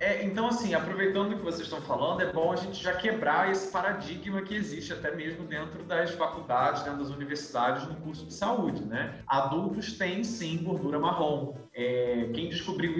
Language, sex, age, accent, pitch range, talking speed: Portuguese, male, 20-39, Brazilian, 155-195 Hz, 185 wpm